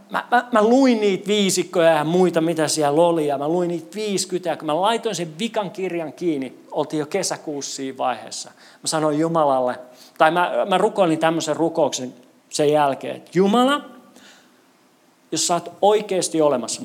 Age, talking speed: 40-59, 165 wpm